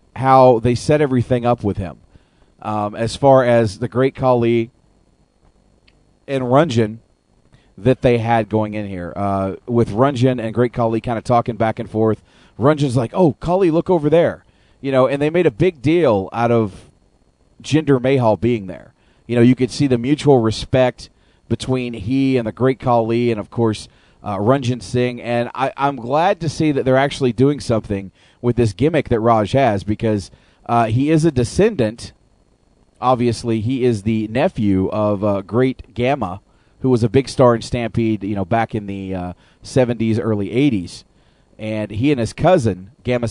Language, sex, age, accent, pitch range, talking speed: English, male, 40-59, American, 105-130 Hz, 180 wpm